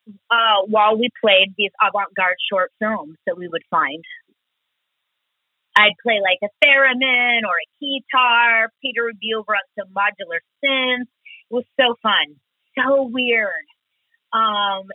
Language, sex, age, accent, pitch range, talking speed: English, female, 30-49, American, 200-255 Hz, 135 wpm